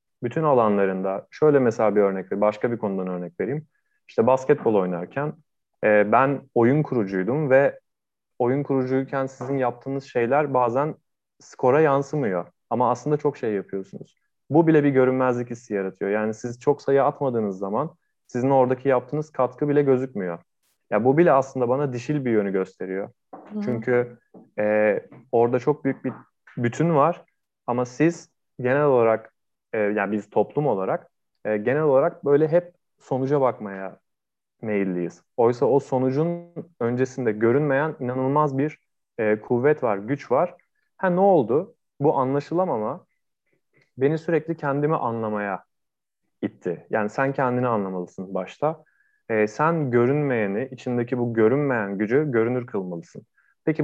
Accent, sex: native, male